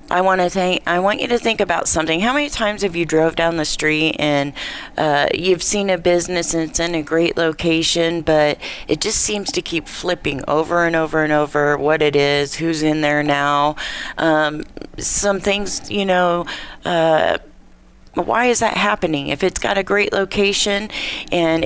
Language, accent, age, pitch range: English, American, 40-59, 160-195 Hz